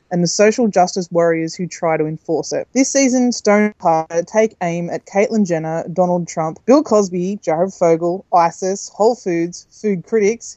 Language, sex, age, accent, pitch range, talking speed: English, female, 20-39, Australian, 170-210 Hz, 170 wpm